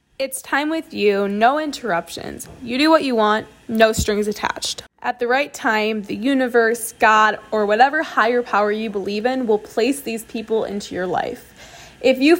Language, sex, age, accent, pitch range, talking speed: English, female, 10-29, American, 215-260 Hz, 180 wpm